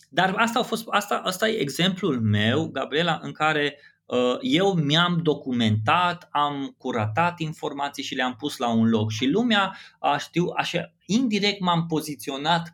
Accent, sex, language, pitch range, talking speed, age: native, male, Romanian, 115-165 Hz, 125 wpm, 20-39